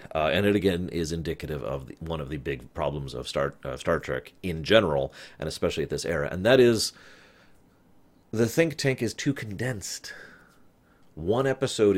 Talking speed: 180 wpm